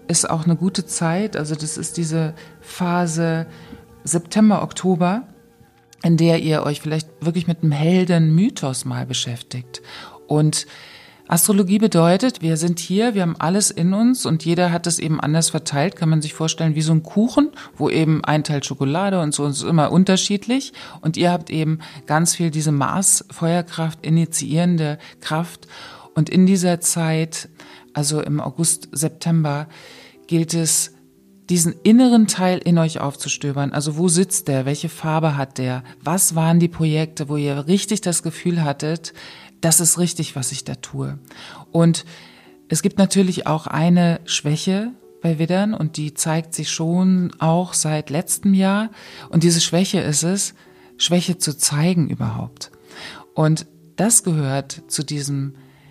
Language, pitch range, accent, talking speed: German, 150-180 Hz, German, 155 wpm